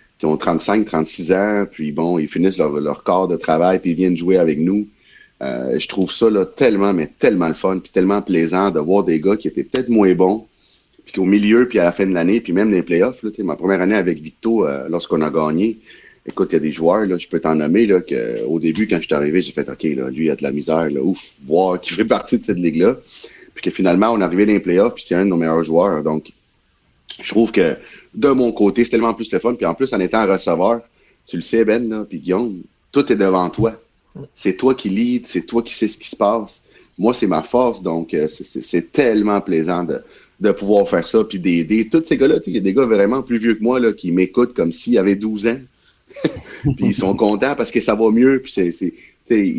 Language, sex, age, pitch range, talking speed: French, male, 30-49, 85-115 Hz, 255 wpm